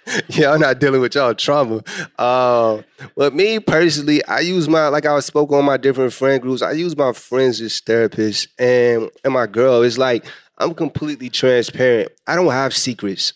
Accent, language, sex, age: American, English, male, 20-39